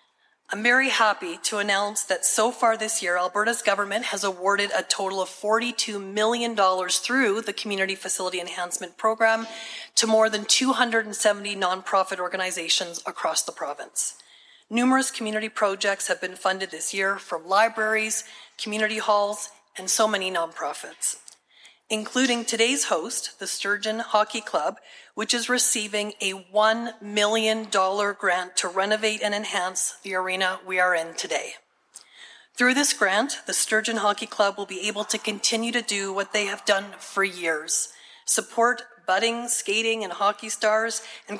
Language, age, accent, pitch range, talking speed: English, 30-49, American, 195-225 Hz, 145 wpm